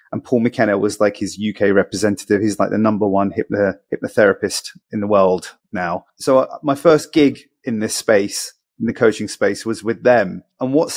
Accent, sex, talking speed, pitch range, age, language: British, male, 195 wpm, 110-130 Hz, 30-49, English